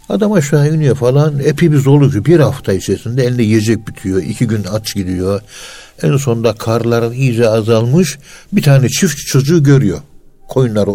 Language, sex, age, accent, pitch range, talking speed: Turkish, male, 60-79, native, 95-120 Hz, 150 wpm